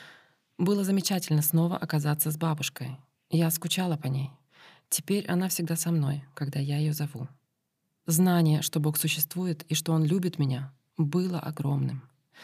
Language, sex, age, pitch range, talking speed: Russian, female, 20-39, 145-170 Hz, 145 wpm